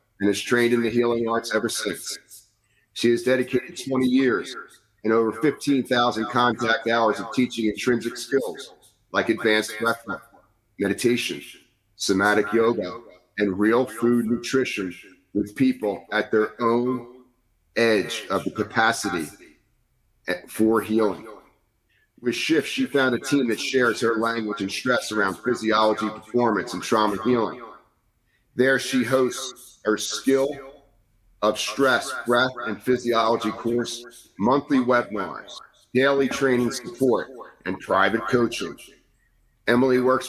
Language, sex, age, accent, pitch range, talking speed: English, male, 40-59, American, 110-130 Hz, 125 wpm